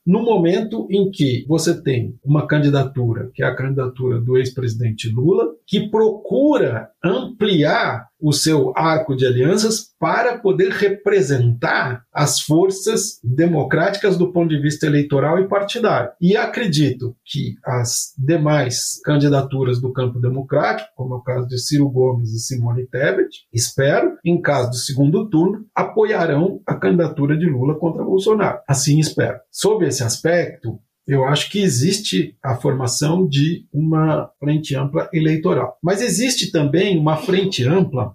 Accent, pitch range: Brazilian, 125-170 Hz